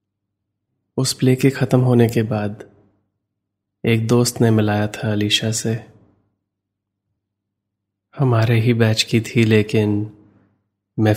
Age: 20-39